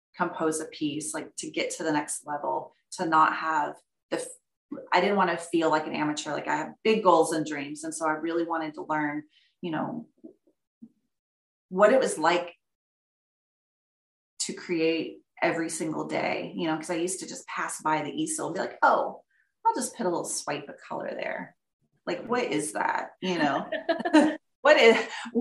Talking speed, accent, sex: 185 wpm, American, female